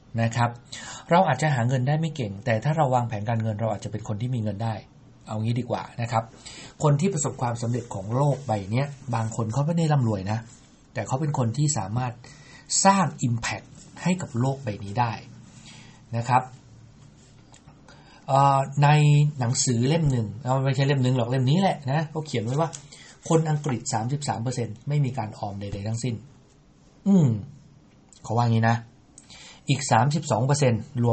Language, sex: English, male